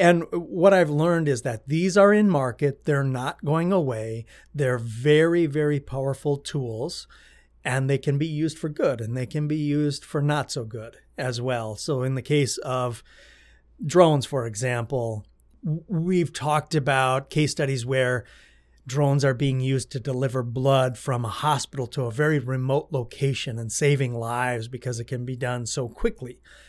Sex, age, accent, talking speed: male, 30-49, American, 170 wpm